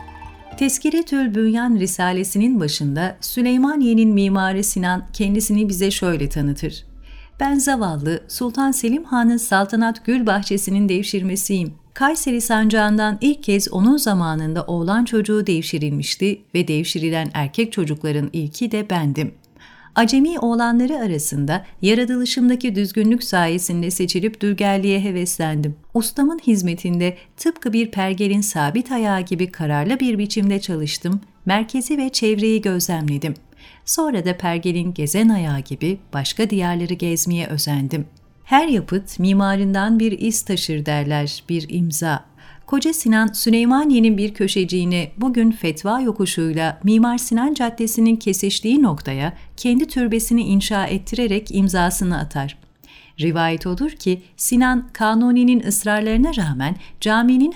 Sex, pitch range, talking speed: female, 170-230 Hz, 110 wpm